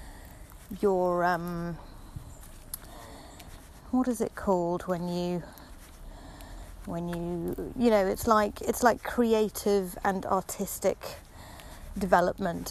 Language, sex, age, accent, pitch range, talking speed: English, female, 30-49, British, 175-220 Hz, 95 wpm